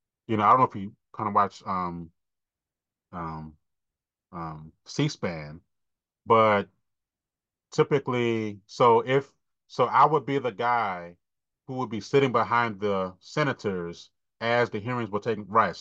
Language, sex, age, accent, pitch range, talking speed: English, male, 30-49, American, 95-120 Hz, 140 wpm